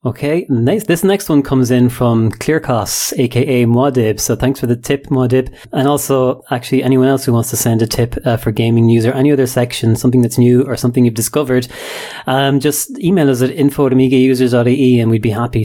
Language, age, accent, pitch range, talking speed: English, 30-49, Irish, 110-130 Hz, 205 wpm